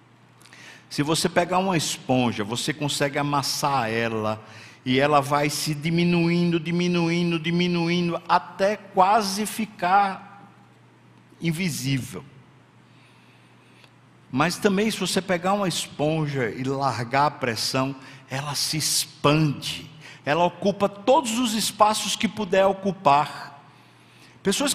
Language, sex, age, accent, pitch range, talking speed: Portuguese, male, 60-79, Brazilian, 145-195 Hz, 105 wpm